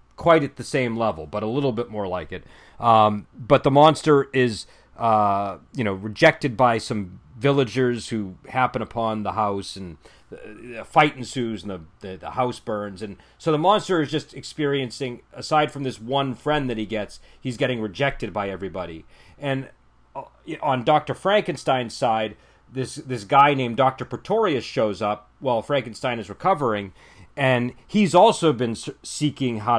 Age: 40-59